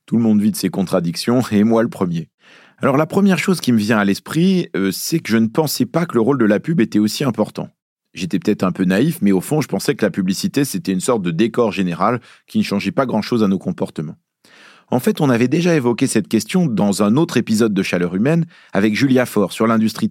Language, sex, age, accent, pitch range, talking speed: French, male, 40-59, French, 105-150 Hz, 245 wpm